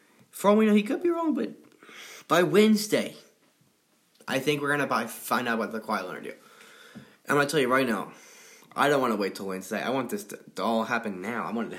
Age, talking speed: 10-29, 245 wpm